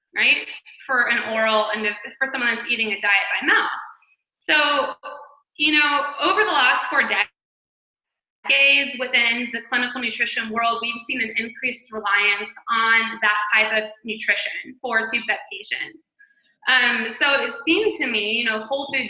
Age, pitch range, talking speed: 20-39, 220-285 Hz, 155 wpm